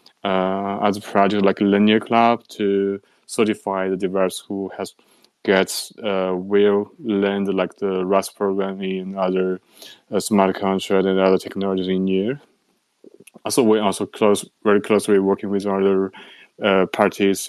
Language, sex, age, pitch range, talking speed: English, male, 20-39, 95-105 Hz, 145 wpm